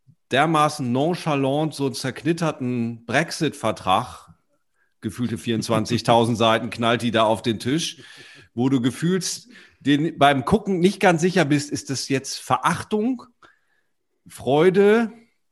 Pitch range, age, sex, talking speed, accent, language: 110-150 Hz, 40-59, male, 115 wpm, German, German